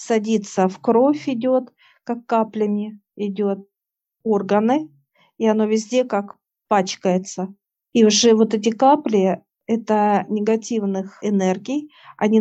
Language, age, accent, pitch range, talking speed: Russian, 50-69, native, 200-225 Hz, 105 wpm